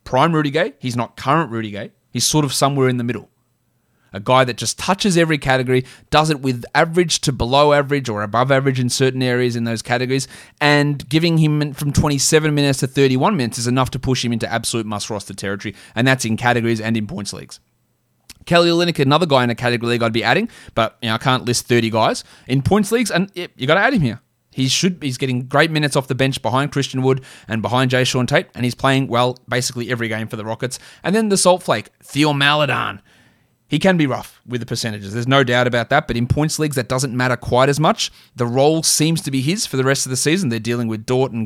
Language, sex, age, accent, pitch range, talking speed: English, male, 20-39, Australian, 120-150 Hz, 240 wpm